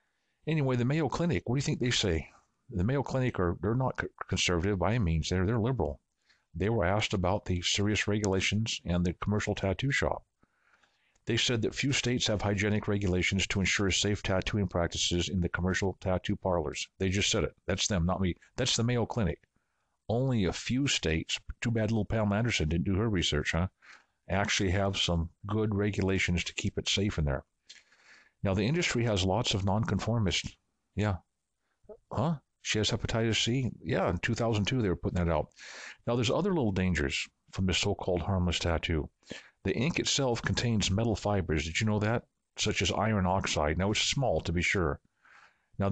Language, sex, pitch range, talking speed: English, male, 90-115 Hz, 185 wpm